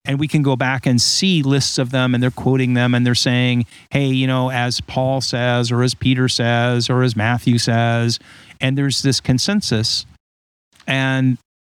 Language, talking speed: English, 185 wpm